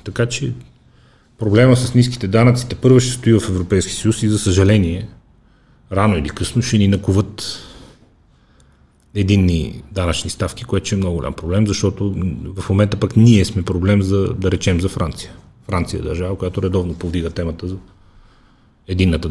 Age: 40-59